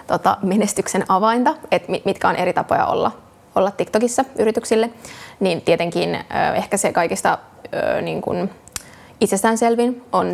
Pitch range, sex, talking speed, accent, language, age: 185-225 Hz, female, 120 wpm, native, Finnish, 20-39